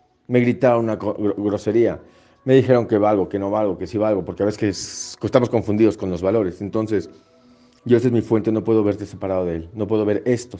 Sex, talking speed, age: male, 210 wpm, 40-59